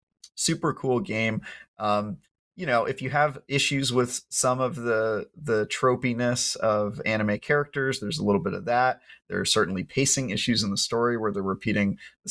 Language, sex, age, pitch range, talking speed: English, male, 30-49, 100-125 Hz, 180 wpm